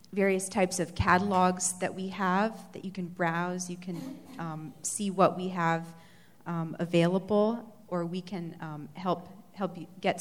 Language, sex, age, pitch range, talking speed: English, female, 30-49, 165-190 Hz, 165 wpm